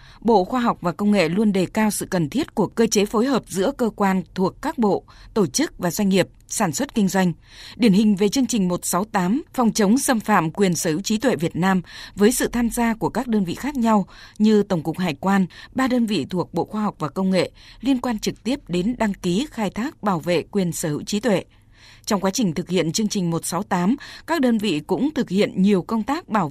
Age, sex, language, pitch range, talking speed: 20-39, female, Vietnamese, 180-230 Hz, 245 wpm